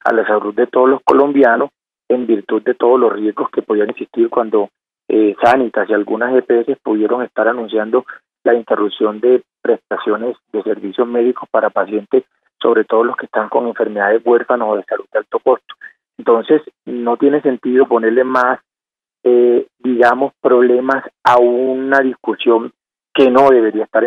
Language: Spanish